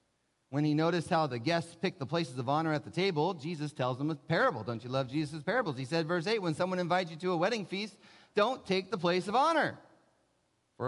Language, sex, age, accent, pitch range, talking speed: English, male, 30-49, American, 120-170 Hz, 235 wpm